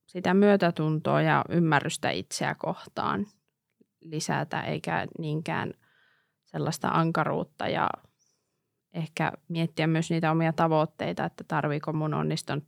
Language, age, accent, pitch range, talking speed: Finnish, 20-39, native, 155-180 Hz, 105 wpm